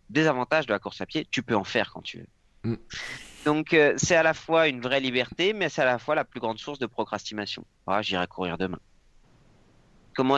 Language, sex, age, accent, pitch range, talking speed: French, male, 30-49, French, 105-140 Hz, 225 wpm